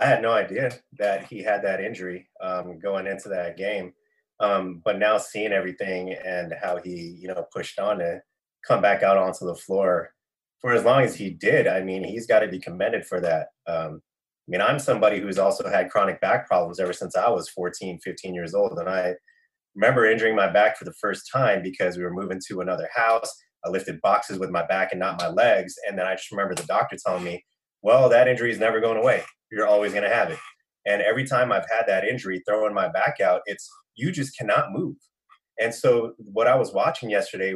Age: 20-39